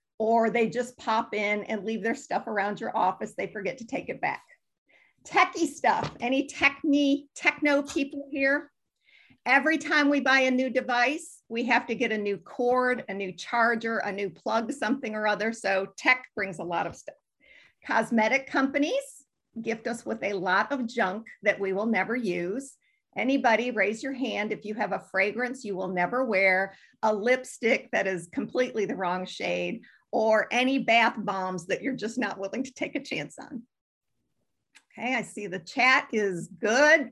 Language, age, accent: English, 50-69, American